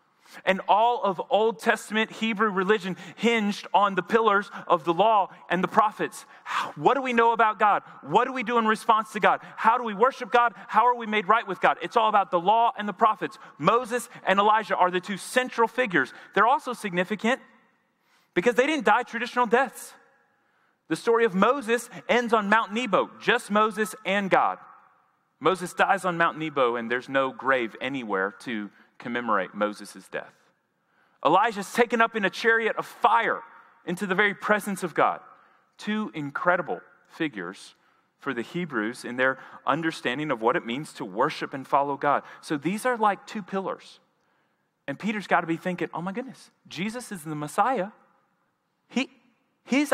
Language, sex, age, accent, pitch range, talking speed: English, male, 30-49, American, 175-235 Hz, 175 wpm